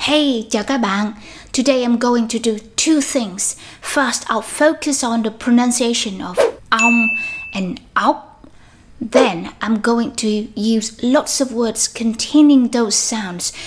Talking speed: 140 wpm